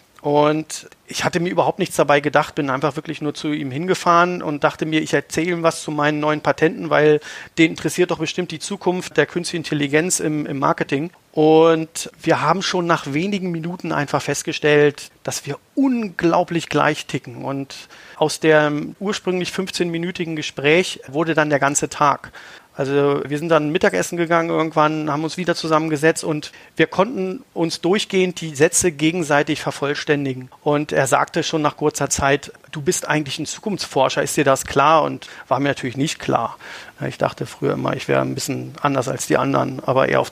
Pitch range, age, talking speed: 145-170 Hz, 40-59, 180 wpm